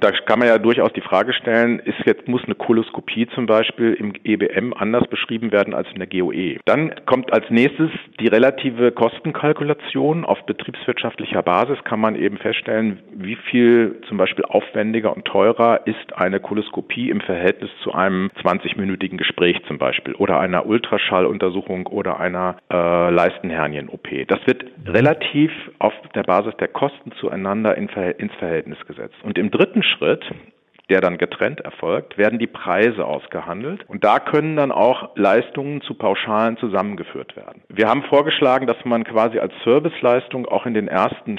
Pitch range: 100-135 Hz